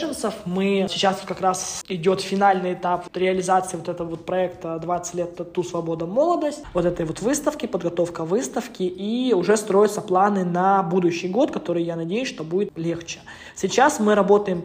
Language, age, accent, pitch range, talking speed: Russian, 20-39, native, 180-210 Hz, 155 wpm